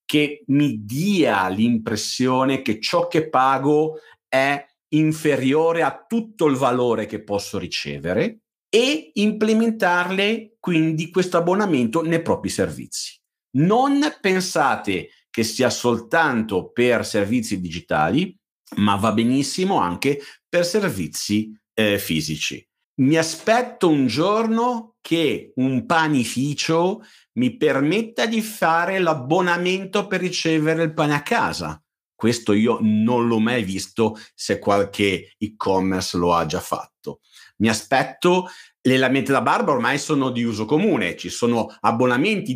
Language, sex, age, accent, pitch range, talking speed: Italian, male, 50-69, native, 115-175 Hz, 120 wpm